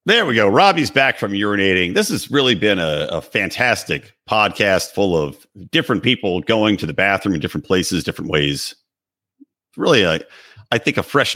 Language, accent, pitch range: English, American, 100-135 Hz